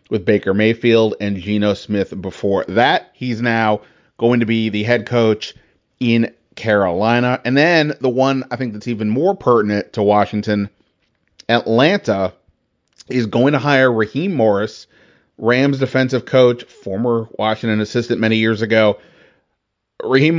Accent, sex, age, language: American, male, 30-49, English